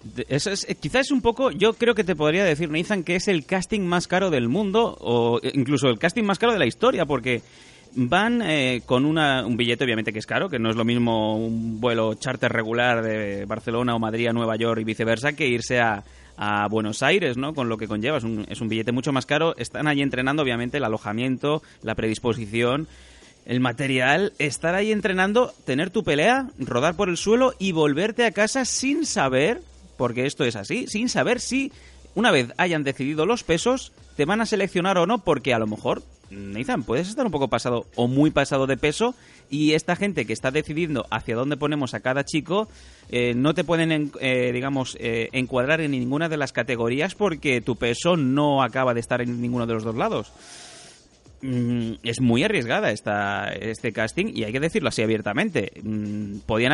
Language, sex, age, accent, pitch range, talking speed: Spanish, male, 30-49, Spanish, 115-170 Hz, 200 wpm